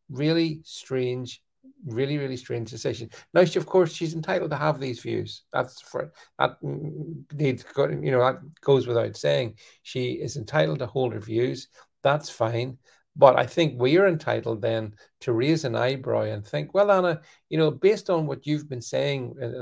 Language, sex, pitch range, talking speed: English, male, 125-155 Hz, 180 wpm